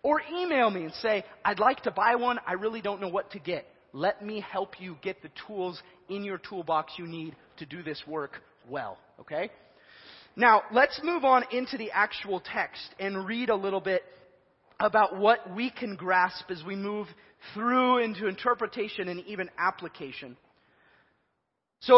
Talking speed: 170 wpm